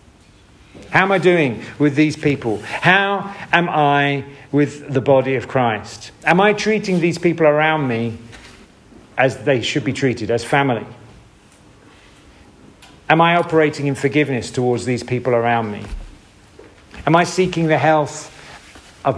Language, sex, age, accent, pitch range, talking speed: English, male, 50-69, British, 115-155 Hz, 140 wpm